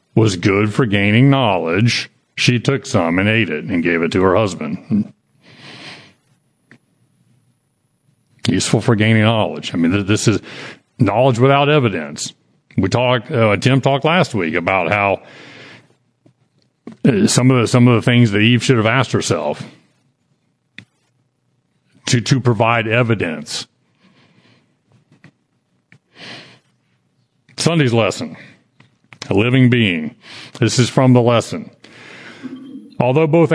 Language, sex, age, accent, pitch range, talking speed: English, male, 50-69, American, 110-135 Hz, 115 wpm